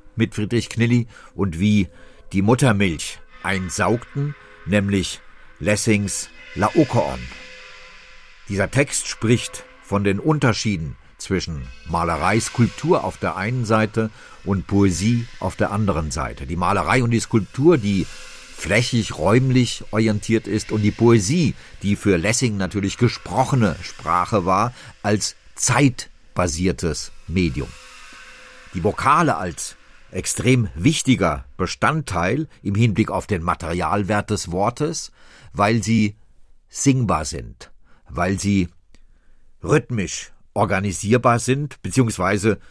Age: 50-69